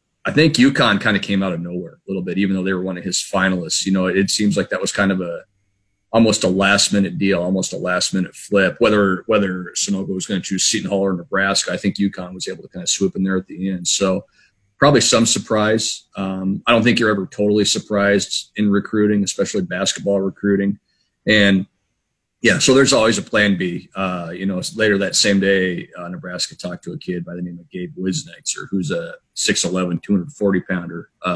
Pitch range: 95-100 Hz